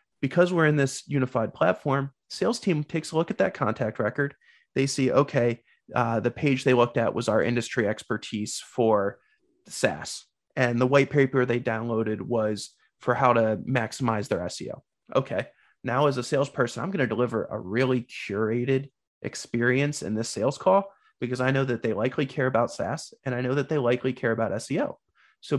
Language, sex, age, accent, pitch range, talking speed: English, male, 30-49, American, 120-145 Hz, 185 wpm